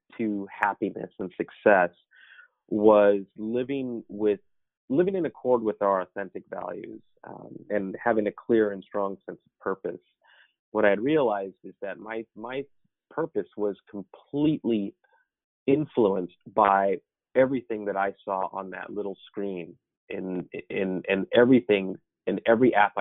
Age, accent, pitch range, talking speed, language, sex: 30-49, American, 100-120 Hz, 135 wpm, English, male